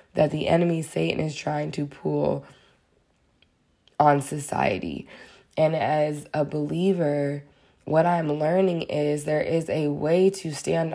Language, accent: English, American